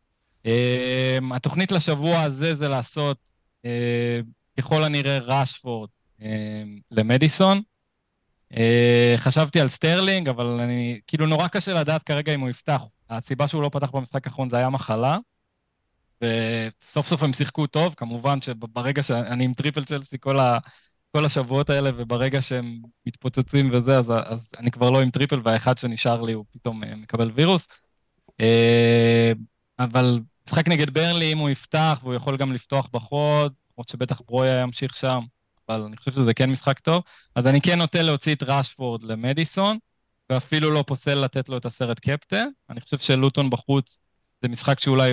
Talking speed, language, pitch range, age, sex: 155 wpm, Hebrew, 115-145 Hz, 20-39, male